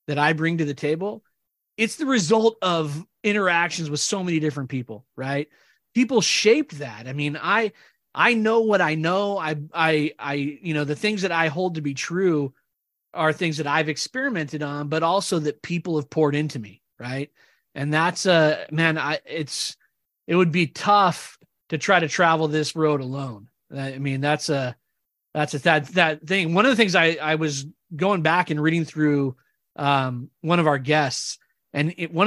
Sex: male